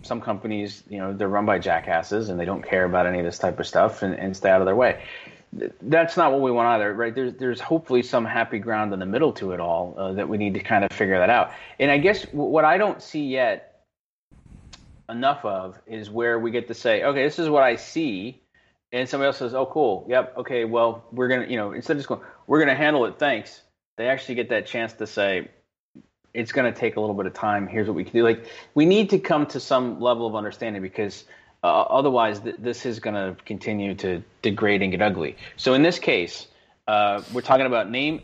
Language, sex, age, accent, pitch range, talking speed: English, male, 30-49, American, 105-130 Hz, 245 wpm